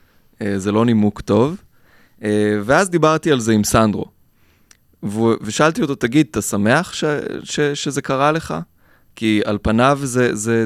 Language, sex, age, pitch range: Hebrew, male, 20-39, 105-145 Hz